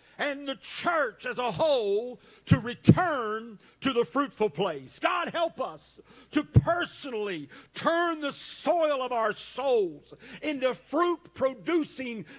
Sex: male